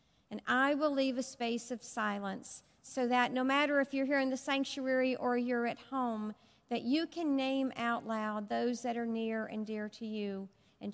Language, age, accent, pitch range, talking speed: English, 50-69, American, 220-260 Hz, 205 wpm